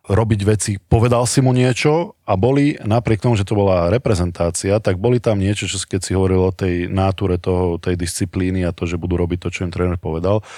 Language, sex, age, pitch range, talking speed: Slovak, male, 20-39, 95-115 Hz, 215 wpm